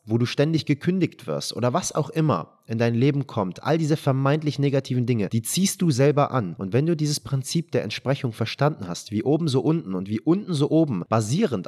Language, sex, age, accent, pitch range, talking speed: German, male, 30-49, German, 115-140 Hz, 215 wpm